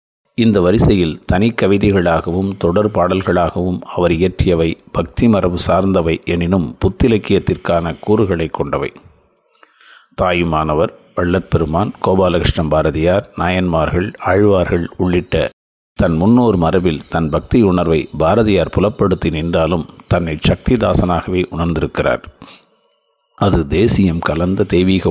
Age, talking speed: 50-69, 85 wpm